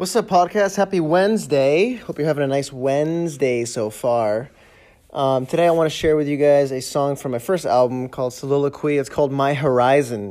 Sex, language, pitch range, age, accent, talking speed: male, English, 125-160 Hz, 20-39, American, 200 wpm